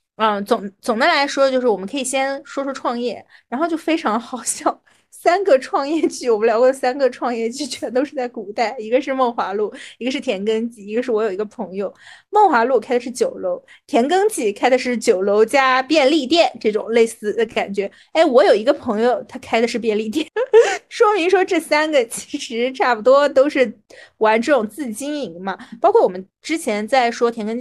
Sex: female